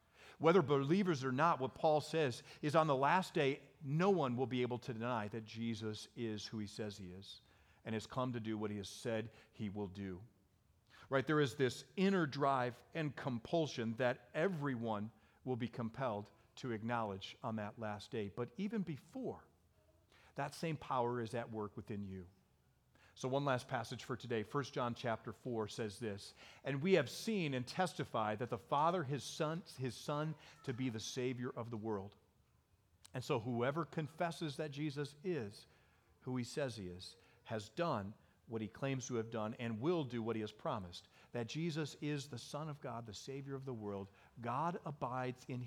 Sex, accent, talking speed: male, American, 185 wpm